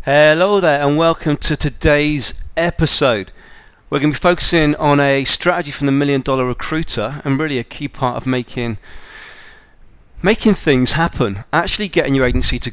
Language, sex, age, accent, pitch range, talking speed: English, male, 30-49, British, 125-155 Hz, 165 wpm